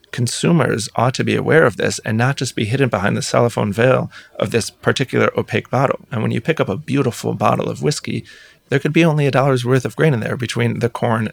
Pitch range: 110-135 Hz